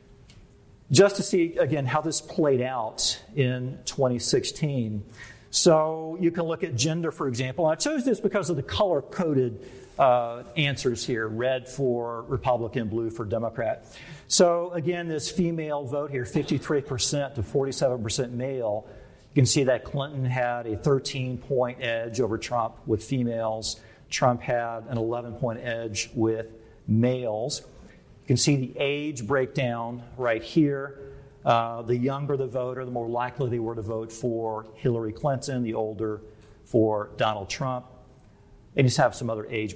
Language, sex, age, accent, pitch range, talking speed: English, male, 50-69, American, 115-140 Hz, 145 wpm